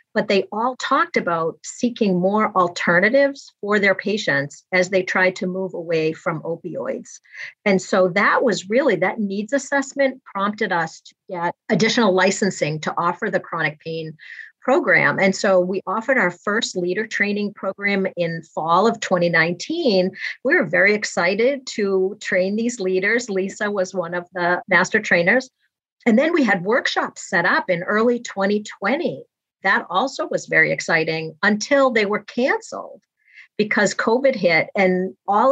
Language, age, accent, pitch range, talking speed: English, 50-69, American, 175-215 Hz, 155 wpm